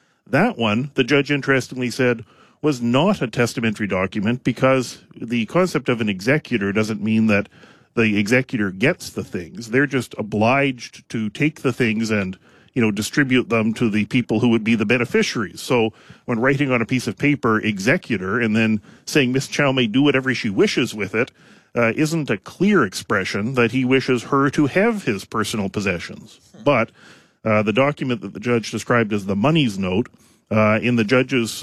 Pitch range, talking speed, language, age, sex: 110-130 Hz, 180 wpm, English, 40-59, male